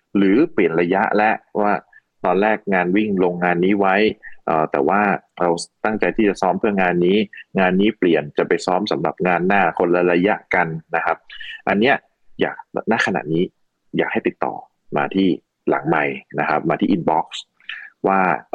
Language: Thai